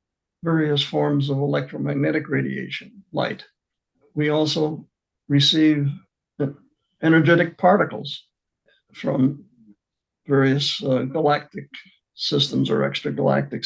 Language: English